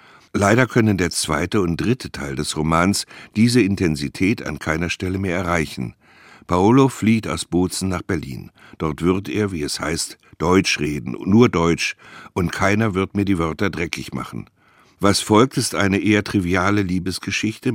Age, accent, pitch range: 60-79, German, 85-105 Hz